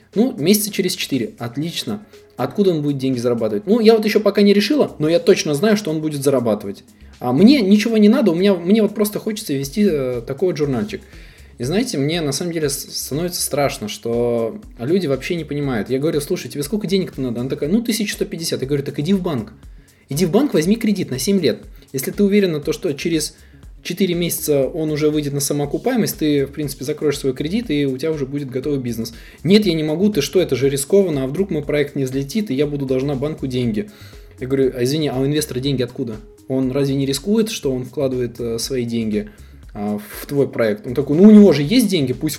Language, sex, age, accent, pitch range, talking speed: Russian, male, 20-39, native, 130-195 Hz, 220 wpm